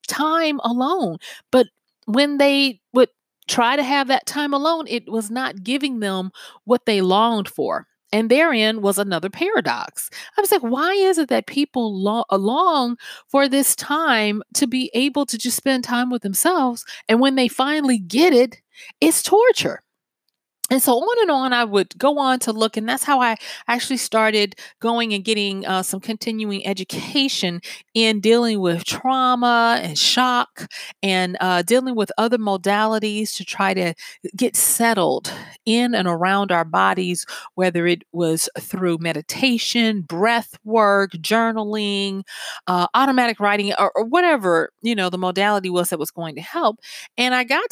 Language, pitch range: English, 185-255 Hz